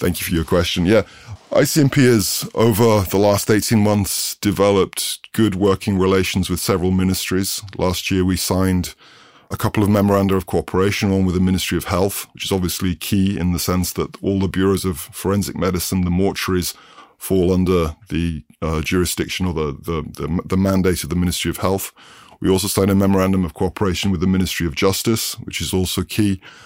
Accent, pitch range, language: British, 90-100 Hz, Ukrainian